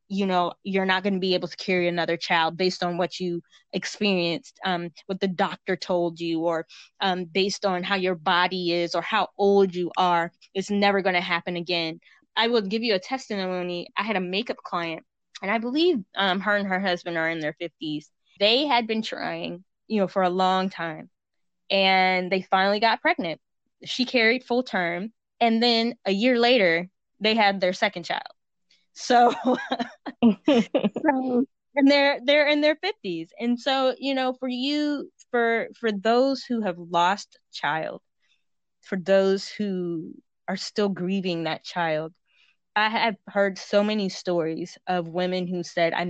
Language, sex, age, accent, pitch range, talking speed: English, female, 20-39, American, 180-220 Hz, 175 wpm